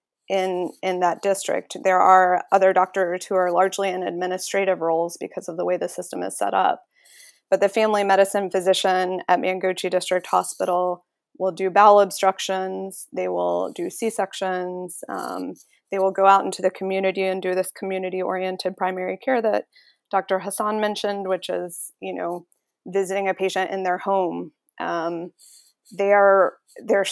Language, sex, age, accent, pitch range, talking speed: English, female, 20-39, American, 185-200 Hz, 155 wpm